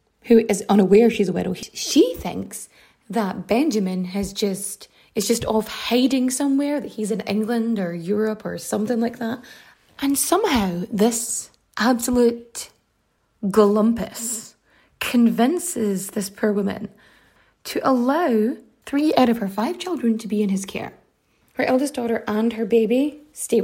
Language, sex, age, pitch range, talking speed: English, female, 20-39, 205-245 Hz, 140 wpm